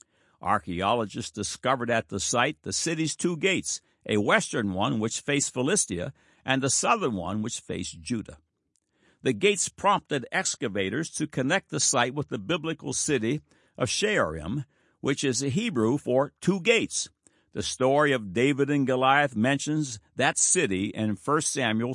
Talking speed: 150 wpm